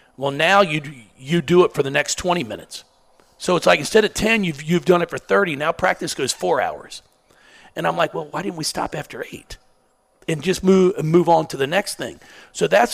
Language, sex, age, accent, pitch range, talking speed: English, male, 40-59, American, 135-185 Hz, 225 wpm